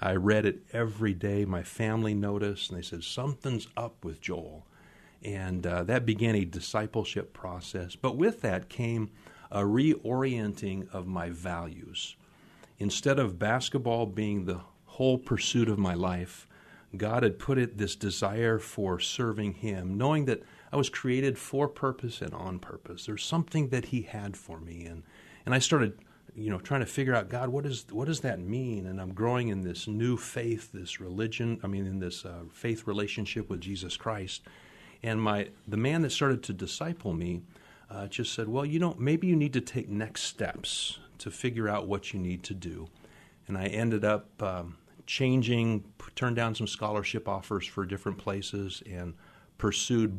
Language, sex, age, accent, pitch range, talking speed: English, male, 40-59, American, 95-120 Hz, 180 wpm